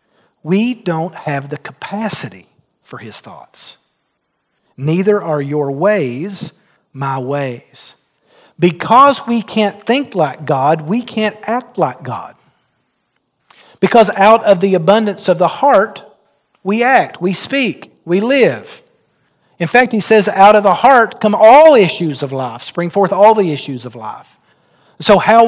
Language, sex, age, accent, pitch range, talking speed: English, male, 40-59, American, 160-220 Hz, 145 wpm